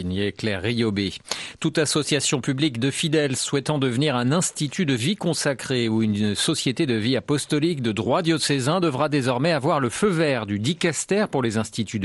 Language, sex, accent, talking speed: French, male, French, 175 wpm